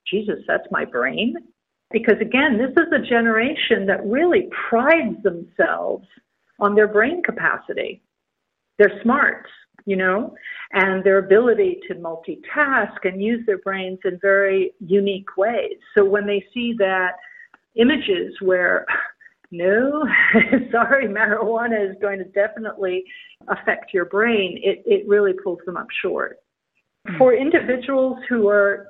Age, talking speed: 50-69, 130 wpm